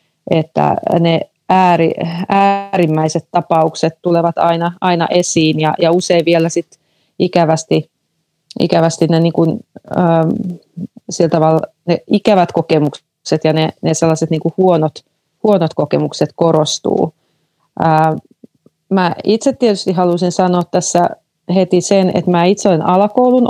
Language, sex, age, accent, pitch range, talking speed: Finnish, female, 30-49, native, 165-185 Hz, 115 wpm